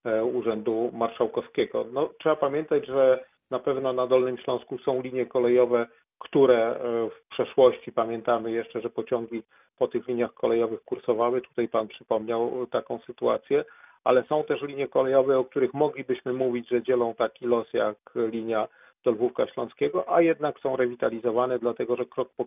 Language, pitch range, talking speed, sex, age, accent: Polish, 115-125 Hz, 150 wpm, male, 40-59, native